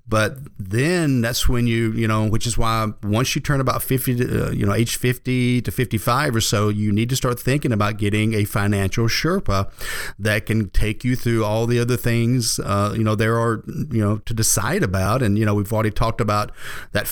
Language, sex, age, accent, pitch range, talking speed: English, male, 40-59, American, 105-125 Hz, 215 wpm